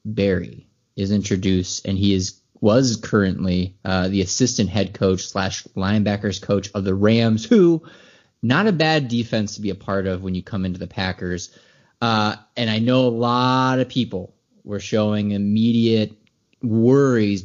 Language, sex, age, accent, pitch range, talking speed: English, male, 30-49, American, 100-125 Hz, 160 wpm